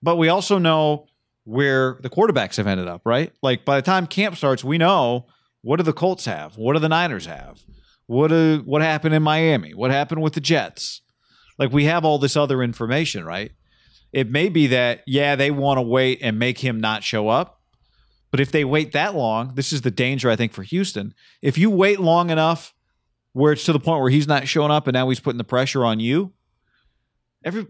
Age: 40-59